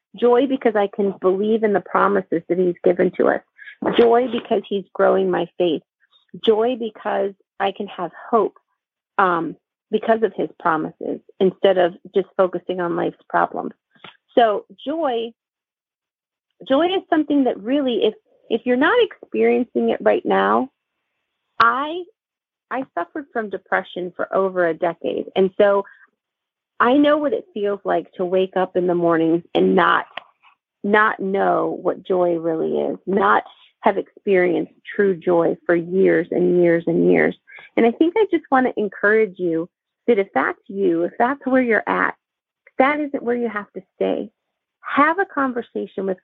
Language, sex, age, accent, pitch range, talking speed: English, female, 40-59, American, 185-250 Hz, 160 wpm